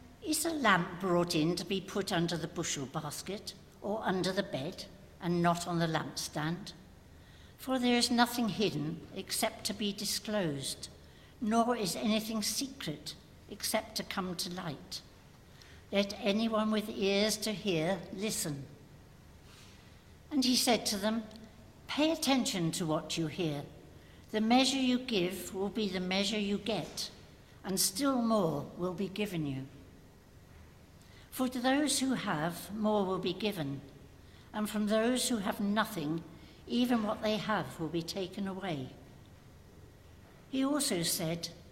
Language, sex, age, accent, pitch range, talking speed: English, female, 60-79, British, 160-220 Hz, 145 wpm